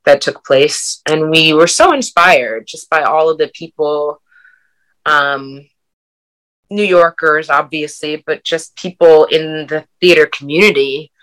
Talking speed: 135 wpm